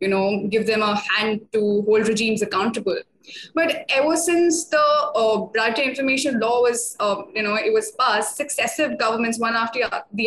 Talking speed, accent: 175 wpm, Indian